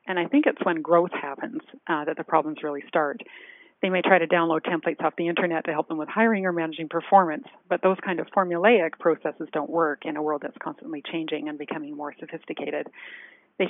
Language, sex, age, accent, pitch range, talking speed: English, female, 40-59, American, 155-200 Hz, 215 wpm